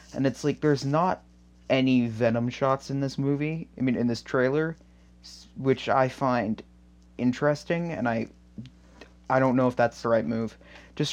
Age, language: 30-49, English